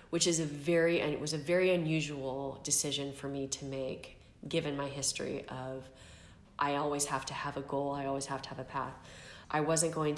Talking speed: 210 wpm